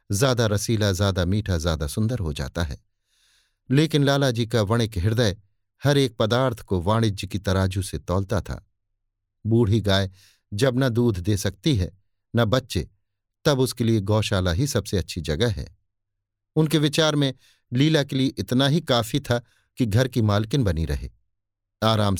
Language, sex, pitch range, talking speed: Hindi, male, 100-130 Hz, 160 wpm